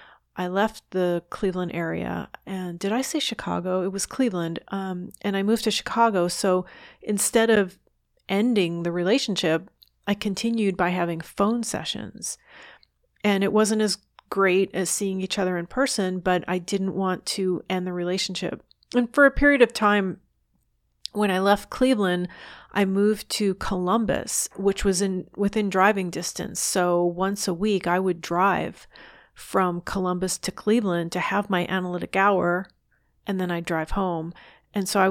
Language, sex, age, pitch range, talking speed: English, female, 30-49, 180-210 Hz, 160 wpm